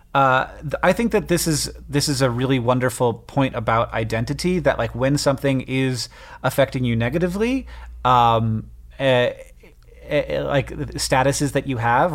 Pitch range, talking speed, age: 115-135 Hz, 155 wpm, 30-49